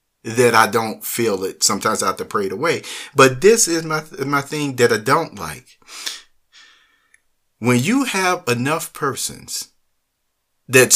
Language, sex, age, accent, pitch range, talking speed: English, male, 50-69, American, 130-210 Hz, 155 wpm